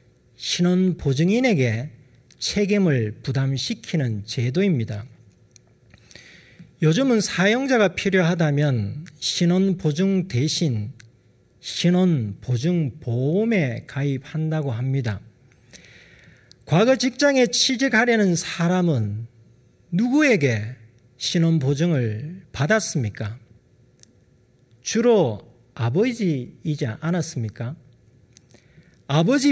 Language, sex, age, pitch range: Korean, male, 40-59, 125-200 Hz